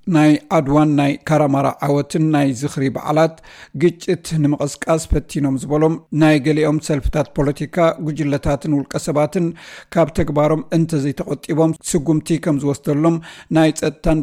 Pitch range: 145-160 Hz